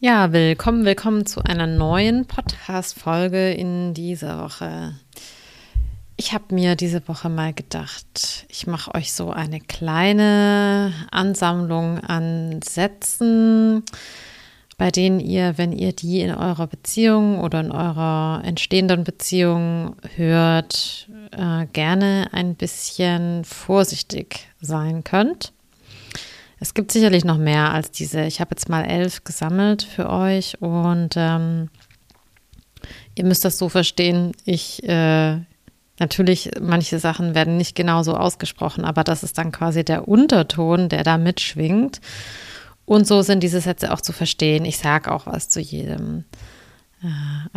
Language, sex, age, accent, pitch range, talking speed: German, female, 30-49, German, 160-190 Hz, 130 wpm